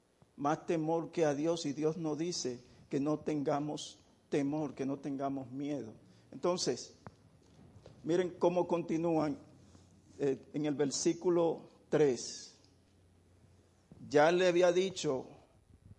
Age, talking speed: 50-69, 115 wpm